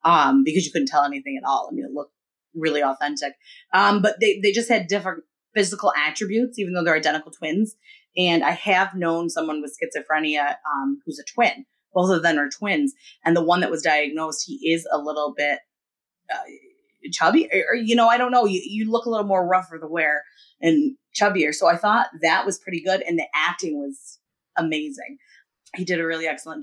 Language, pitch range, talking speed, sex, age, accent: English, 165-255 Hz, 205 wpm, female, 30-49, American